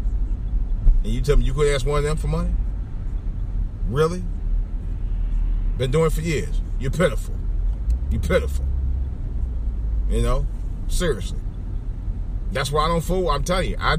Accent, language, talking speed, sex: American, English, 145 wpm, male